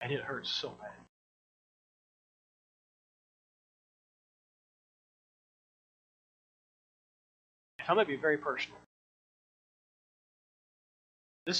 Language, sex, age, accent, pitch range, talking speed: English, male, 30-49, American, 130-160 Hz, 60 wpm